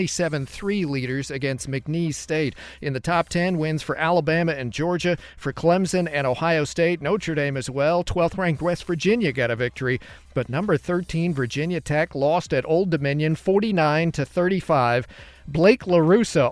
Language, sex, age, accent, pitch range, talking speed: English, male, 40-59, American, 145-180 Hz, 155 wpm